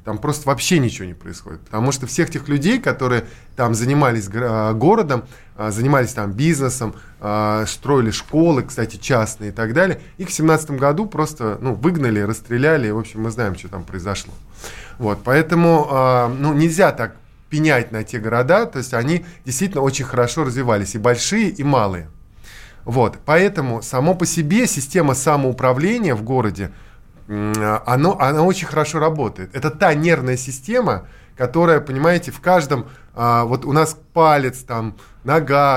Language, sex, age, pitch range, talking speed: Russian, male, 20-39, 110-150 Hz, 150 wpm